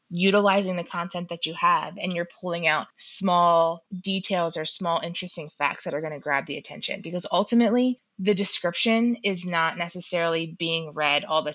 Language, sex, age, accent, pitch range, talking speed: English, female, 20-39, American, 165-200 Hz, 175 wpm